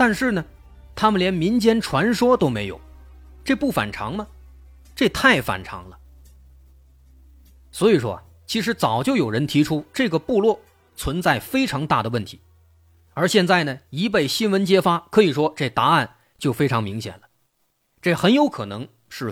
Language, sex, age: Chinese, male, 30-49